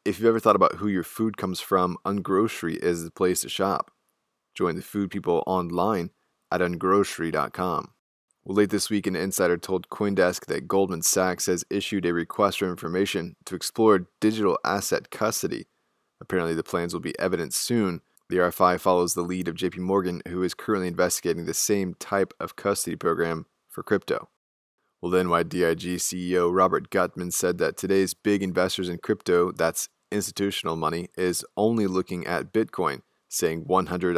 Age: 20-39